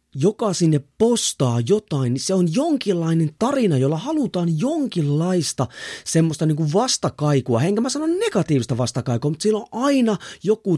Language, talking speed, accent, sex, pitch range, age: Finnish, 145 wpm, native, male, 140-220 Hz, 30-49